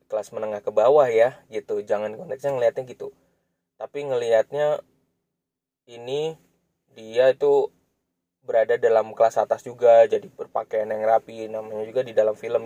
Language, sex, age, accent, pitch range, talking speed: Indonesian, male, 20-39, native, 105-155 Hz, 135 wpm